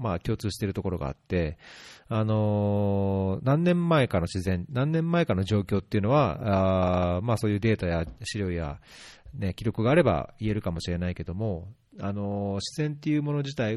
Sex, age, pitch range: male, 40-59, 90-120 Hz